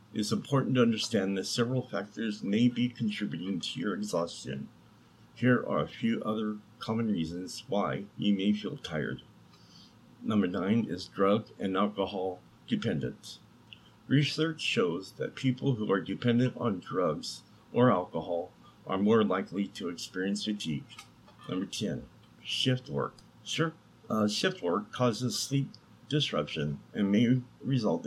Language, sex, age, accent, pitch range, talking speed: English, male, 50-69, American, 100-125 Hz, 140 wpm